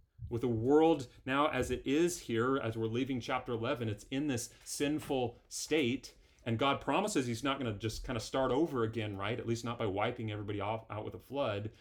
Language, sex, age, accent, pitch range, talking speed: English, male, 30-49, American, 95-120 Hz, 220 wpm